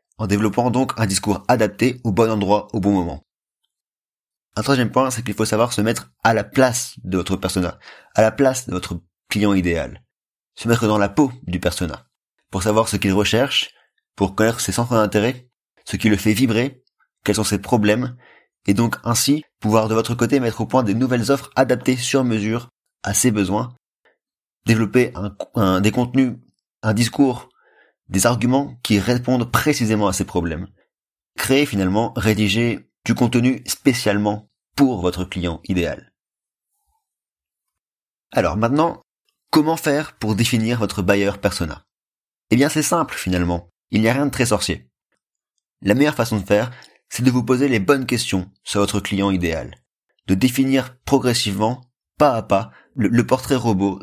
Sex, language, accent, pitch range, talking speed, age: male, French, French, 100-125 Hz, 165 wpm, 30-49